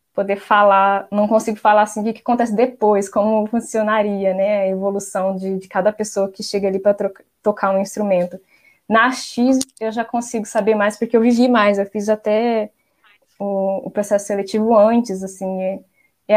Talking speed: 175 wpm